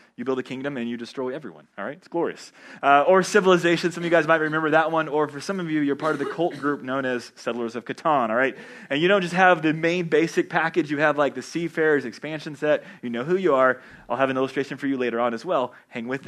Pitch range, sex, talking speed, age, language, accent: 145-180 Hz, male, 275 wpm, 30-49, English, American